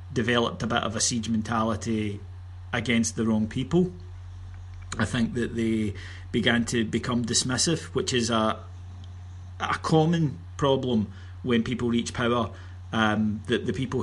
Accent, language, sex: British, English, male